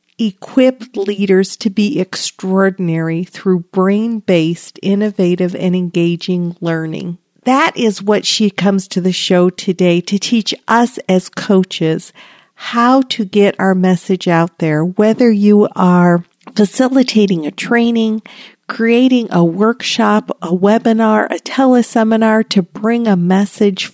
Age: 50-69